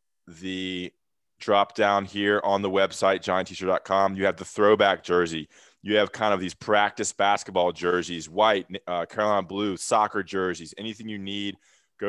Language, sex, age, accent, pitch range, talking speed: English, male, 20-39, American, 85-100 Hz, 160 wpm